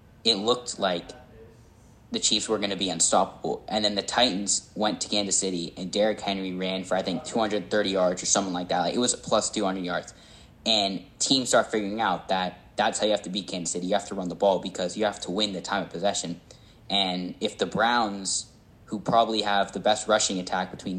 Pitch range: 95-110 Hz